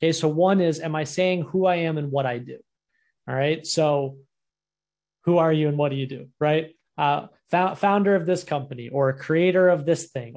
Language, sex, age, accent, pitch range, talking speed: English, male, 30-49, American, 145-175 Hz, 210 wpm